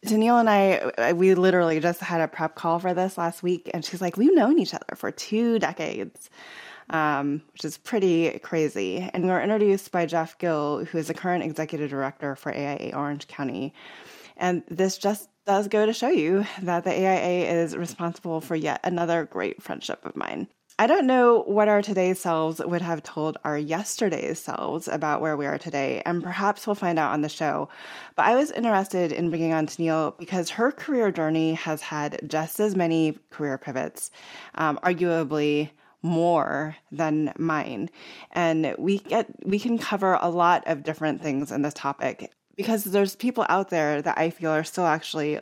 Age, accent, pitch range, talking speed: 20-39, American, 155-195 Hz, 185 wpm